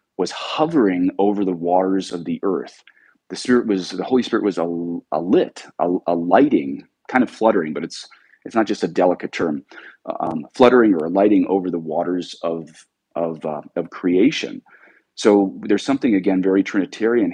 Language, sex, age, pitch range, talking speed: English, male, 30-49, 85-105 Hz, 175 wpm